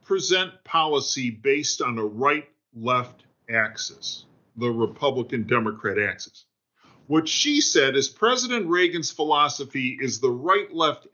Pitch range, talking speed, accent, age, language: 135-215 Hz, 110 wpm, American, 50-69, English